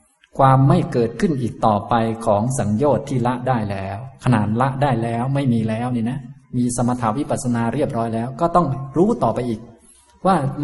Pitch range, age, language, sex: 110-135 Hz, 20-39, Thai, male